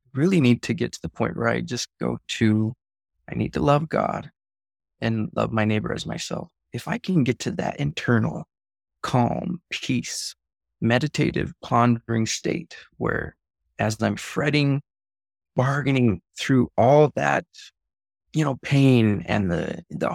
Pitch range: 100-140 Hz